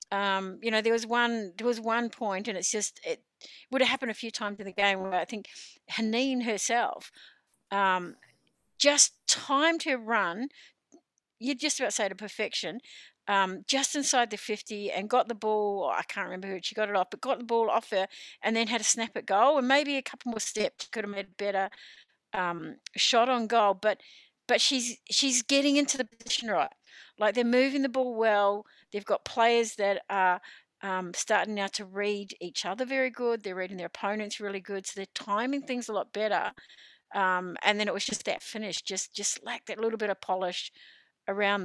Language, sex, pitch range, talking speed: English, female, 200-255 Hz, 210 wpm